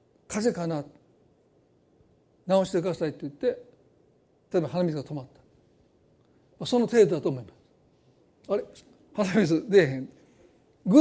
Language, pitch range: Japanese, 175-245 Hz